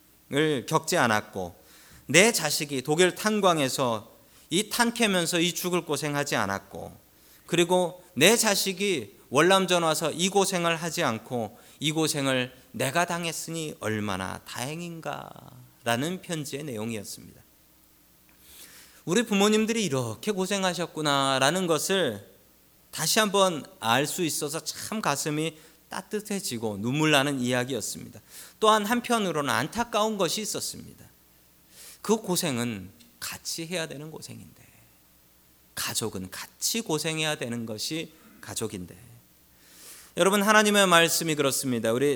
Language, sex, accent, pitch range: Korean, male, native, 115-175 Hz